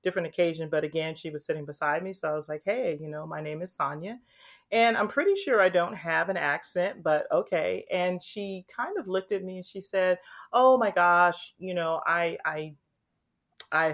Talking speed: 210 wpm